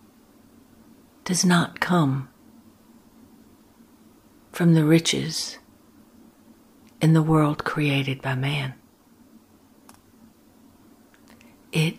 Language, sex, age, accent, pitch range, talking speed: English, female, 60-79, American, 150-255 Hz, 65 wpm